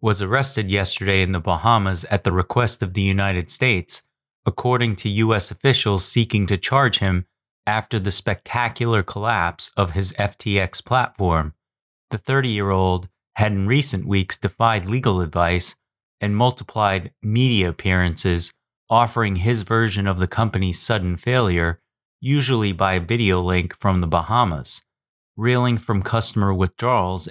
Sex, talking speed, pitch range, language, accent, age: male, 135 wpm, 95-115 Hz, English, American, 30-49